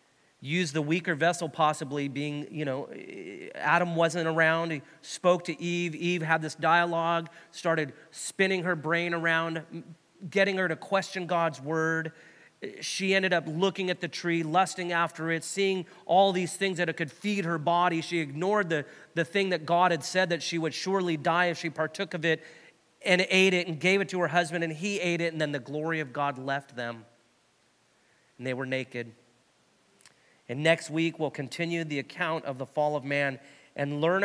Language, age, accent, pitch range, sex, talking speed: English, 30-49, American, 140-170 Hz, male, 190 wpm